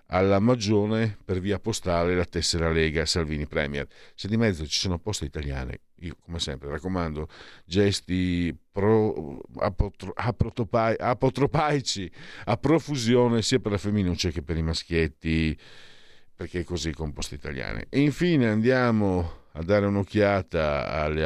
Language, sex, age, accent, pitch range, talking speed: Italian, male, 50-69, native, 80-105 Hz, 135 wpm